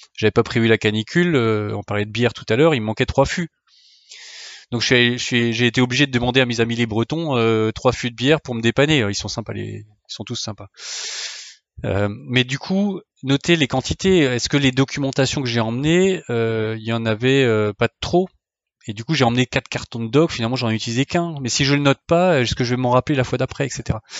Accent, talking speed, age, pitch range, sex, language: French, 250 wpm, 20-39, 110-135 Hz, male, French